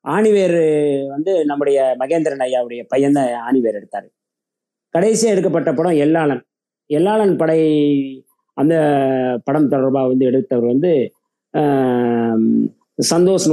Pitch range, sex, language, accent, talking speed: 135-190 Hz, male, Tamil, native, 95 wpm